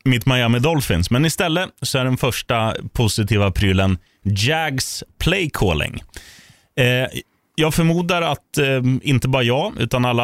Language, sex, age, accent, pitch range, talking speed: Swedish, male, 30-49, native, 105-140 Hz, 135 wpm